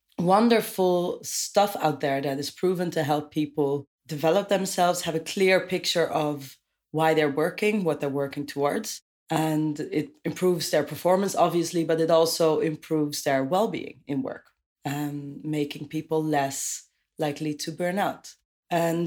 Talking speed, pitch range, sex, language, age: 150 wpm, 145-175 Hz, female, English, 30-49